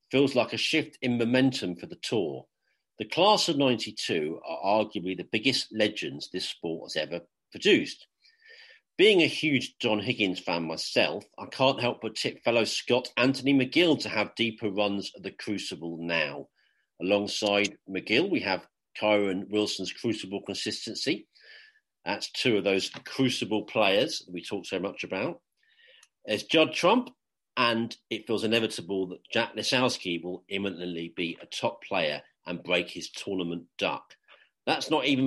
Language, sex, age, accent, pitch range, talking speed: English, male, 40-59, British, 95-130 Hz, 155 wpm